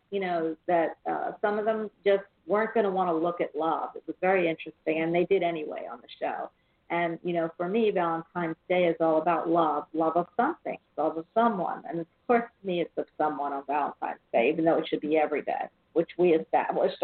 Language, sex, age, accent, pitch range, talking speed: English, female, 50-69, American, 160-215 Hz, 230 wpm